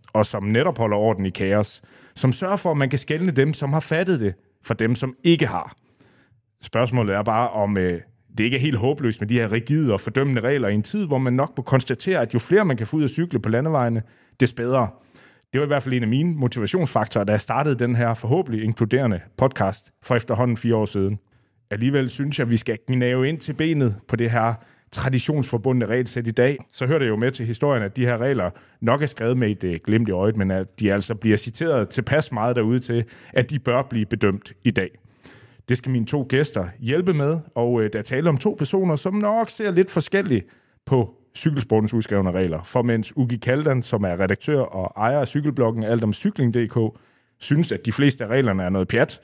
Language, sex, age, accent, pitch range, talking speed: Danish, male, 30-49, native, 110-140 Hz, 220 wpm